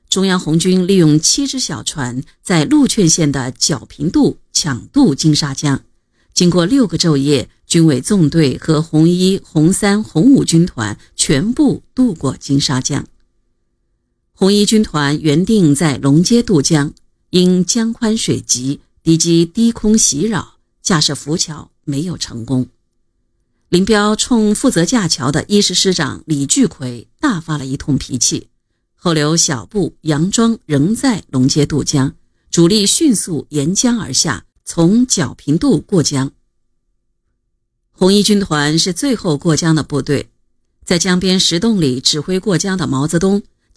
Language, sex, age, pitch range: Chinese, female, 50-69, 140-195 Hz